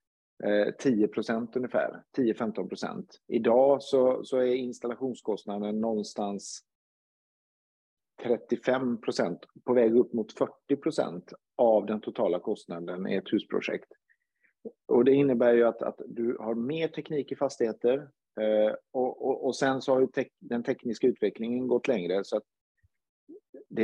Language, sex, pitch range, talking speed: Swedish, male, 105-135 Hz, 130 wpm